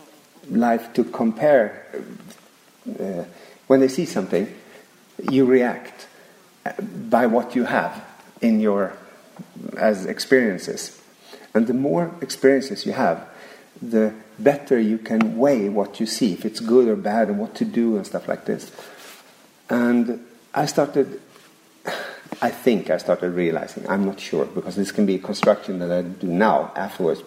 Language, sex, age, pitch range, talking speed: Slovak, male, 50-69, 115-170 Hz, 145 wpm